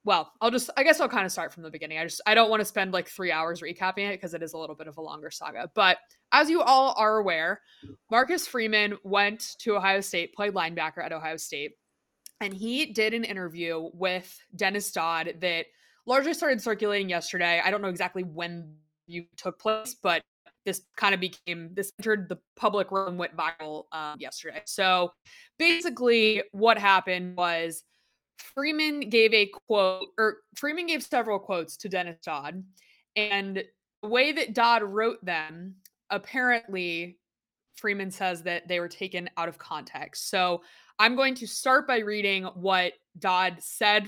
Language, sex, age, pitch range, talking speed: English, female, 20-39, 175-220 Hz, 175 wpm